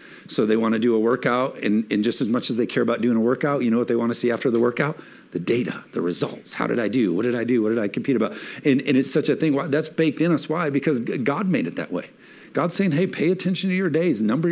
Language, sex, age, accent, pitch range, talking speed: English, male, 50-69, American, 125-160 Hz, 300 wpm